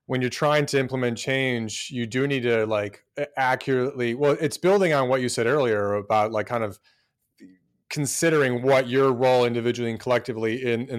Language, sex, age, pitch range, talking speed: English, male, 30-49, 120-165 Hz, 180 wpm